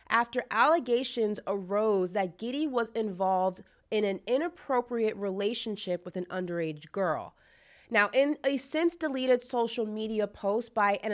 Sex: female